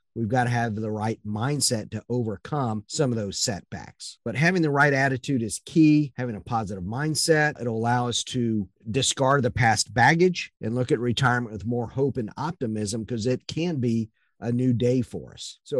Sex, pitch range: male, 120-150 Hz